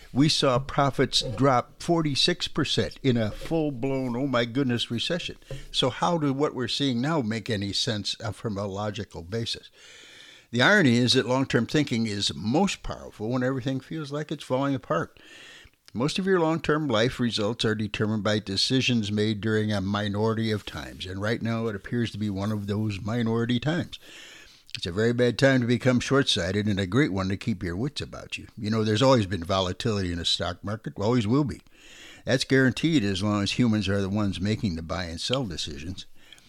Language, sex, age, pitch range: English, male, 60-79, 105-135 Hz